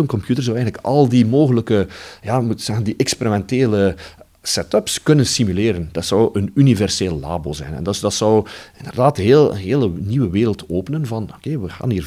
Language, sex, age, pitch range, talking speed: Dutch, male, 40-59, 90-120 Hz, 190 wpm